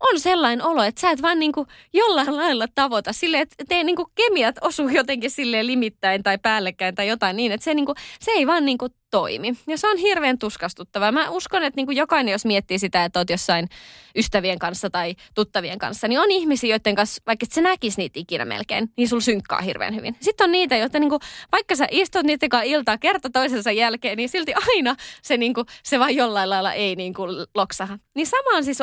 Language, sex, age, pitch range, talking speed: Finnish, female, 20-39, 205-305 Hz, 205 wpm